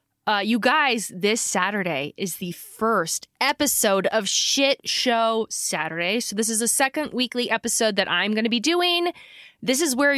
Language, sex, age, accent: English, female, 20-39, American